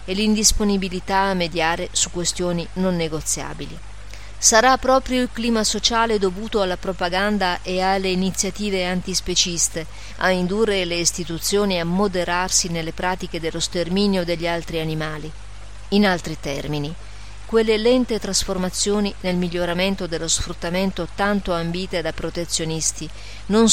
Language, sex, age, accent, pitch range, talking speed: Italian, female, 40-59, native, 165-205 Hz, 120 wpm